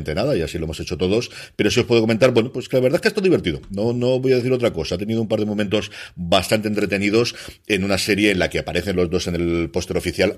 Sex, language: male, Spanish